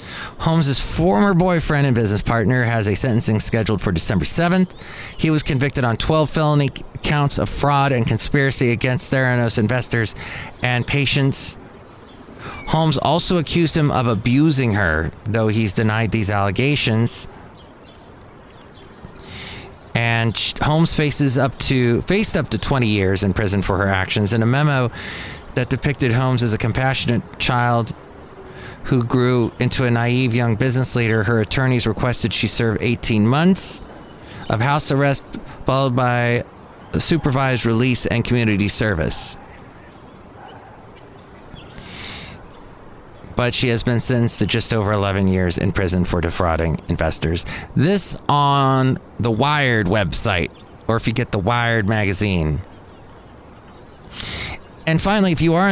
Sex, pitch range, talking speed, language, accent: male, 105-135 Hz, 130 wpm, English, American